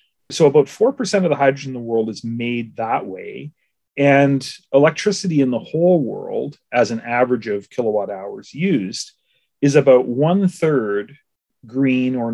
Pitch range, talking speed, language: 115-165 Hz, 155 wpm, English